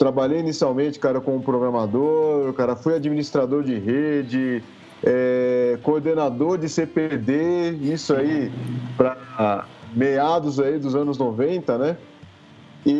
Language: Portuguese